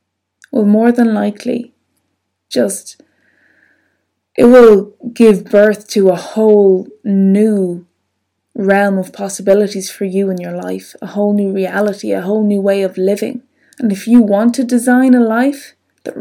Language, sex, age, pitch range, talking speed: English, female, 20-39, 195-245 Hz, 150 wpm